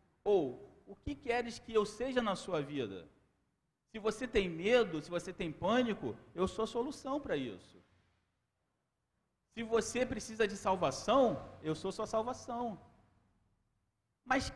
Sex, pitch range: male, 175-235 Hz